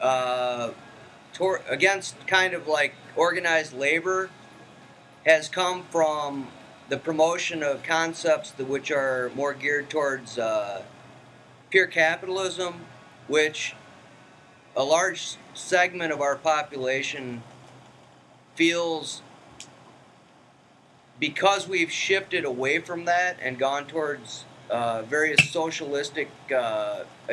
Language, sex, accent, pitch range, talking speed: English, male, American, 135-165 Hz, 100 wpm